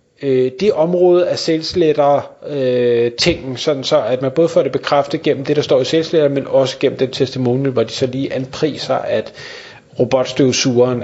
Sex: male